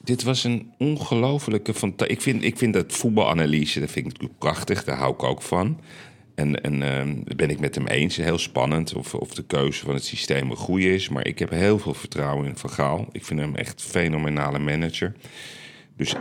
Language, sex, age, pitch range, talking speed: Dutch, male, 40-59, 75-110 Hz, 215 wpm